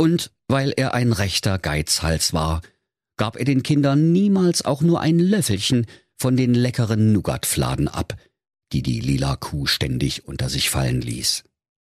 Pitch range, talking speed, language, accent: 85-140 Hz, 150 wpm, German, German